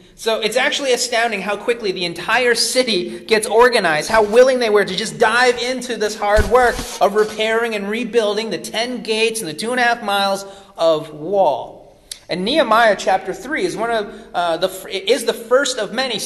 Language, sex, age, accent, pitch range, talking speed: English, male, 30-49, American, 180-235 Hz, 190 wpm